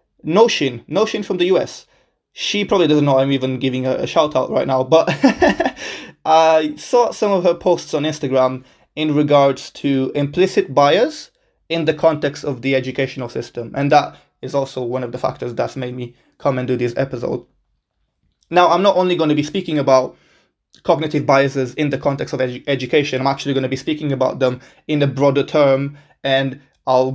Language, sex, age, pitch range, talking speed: English, male, 20-39, 130-170 Hz, 190 wpm